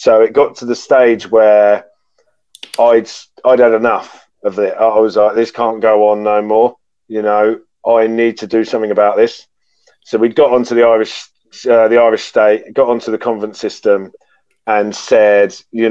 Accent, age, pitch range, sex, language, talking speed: British, 30-49, 110-130 Hz, male, English, 185 wpm